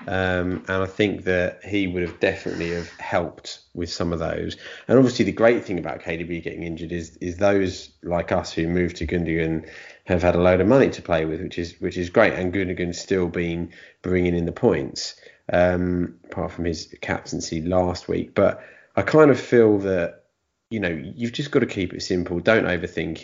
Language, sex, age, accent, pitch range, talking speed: English, male, 30-49, British, 85-95 Hz, 205 wpm